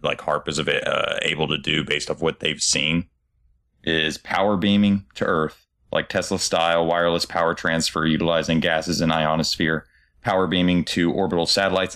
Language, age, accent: English, 30-49, American